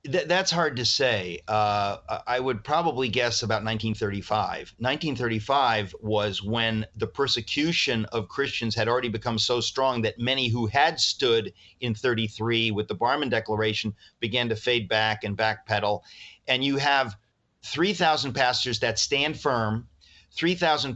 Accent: American